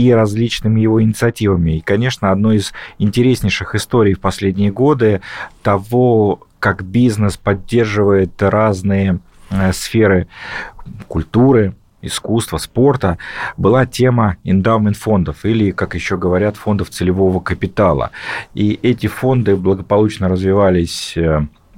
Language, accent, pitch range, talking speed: Russian, native, 95-110 Hz, 100 wpm